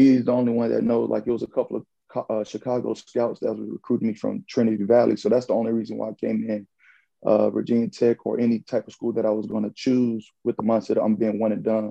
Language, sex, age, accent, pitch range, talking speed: English, male, 30-49, American, 110-125 Hz, 265 wpm